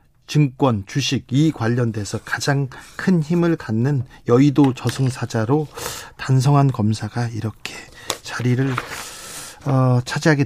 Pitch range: 130-170 Hz